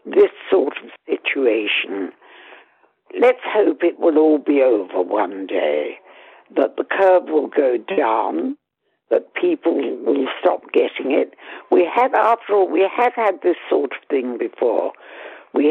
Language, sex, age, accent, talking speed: English, female, 60-79, British, 145 wpm